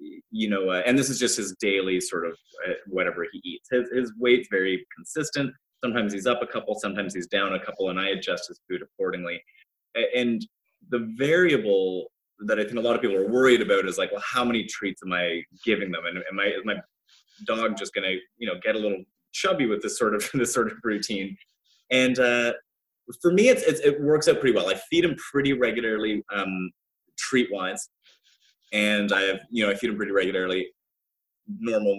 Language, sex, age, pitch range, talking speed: English, male, 20-39, 100-140 Hz, 210 wpm